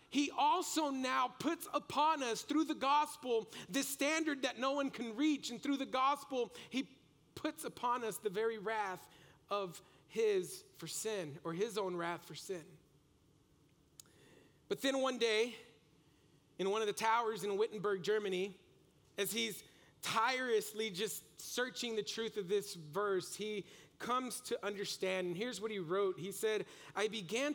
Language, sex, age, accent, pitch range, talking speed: English, male, 40-59, American, 195-260 Hz, 155 wpm